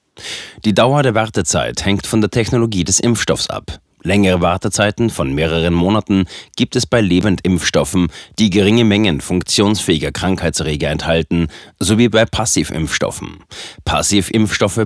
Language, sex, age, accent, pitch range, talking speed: German, male, 30-49, German, 90-110 Hz, 120 wpm